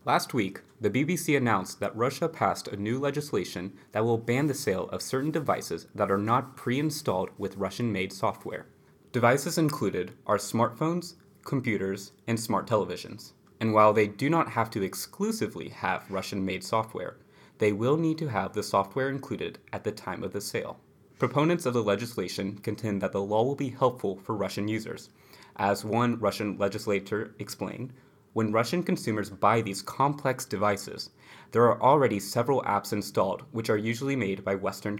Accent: American